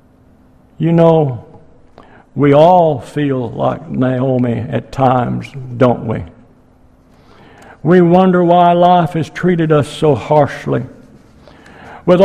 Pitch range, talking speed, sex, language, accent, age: 165-220 Hz, 105 wpm, male, English, American, 60-79